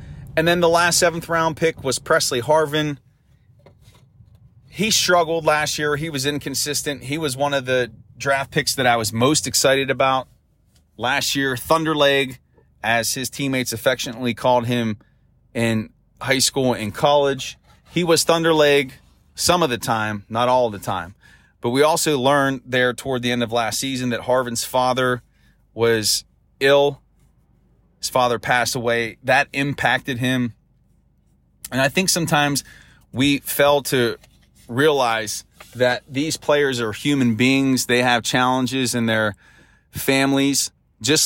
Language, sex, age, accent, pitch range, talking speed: English, male, 30-49, American, 120-145 Hz, 145 wpm